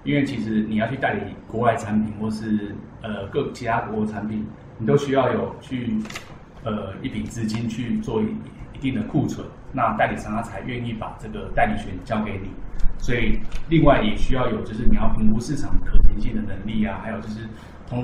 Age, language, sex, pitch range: 20-39, Chinese, male, 105-115 Hz